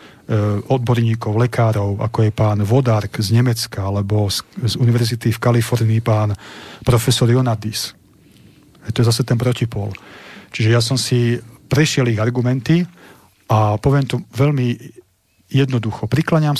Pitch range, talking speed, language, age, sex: 110-125 Hz, 130 wpm, Slovak, 40-59, male